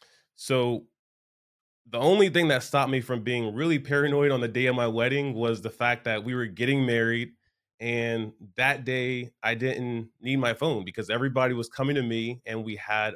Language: English